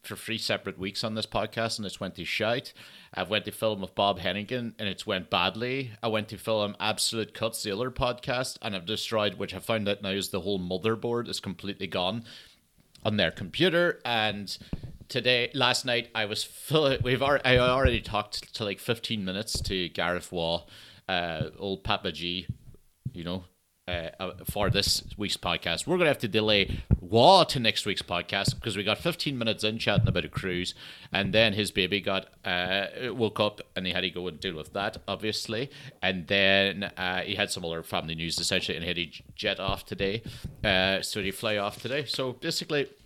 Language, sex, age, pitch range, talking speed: English, male, 40-59, 95-120 Hz, 200 wpm